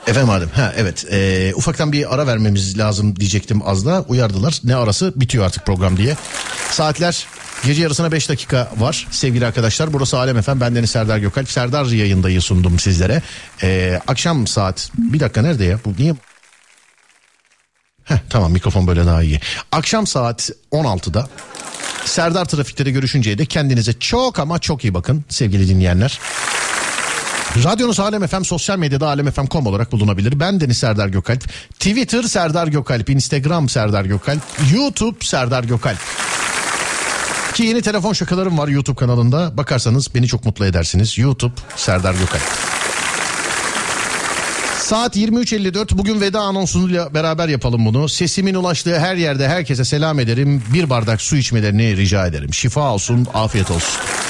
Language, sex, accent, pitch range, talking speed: Turkish, male, native, 105-160 Hz, 145 wpm